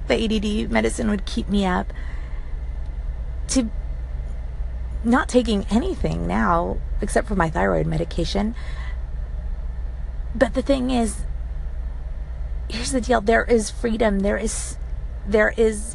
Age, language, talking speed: 30-49, English, 115 wpm